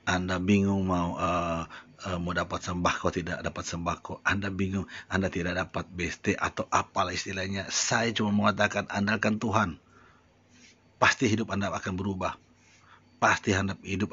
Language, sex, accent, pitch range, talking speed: Indonesian, male, native, 90-105 Hz, 135 wpm